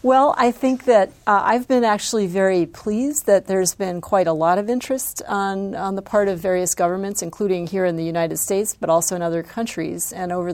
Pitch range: 170-200 Hz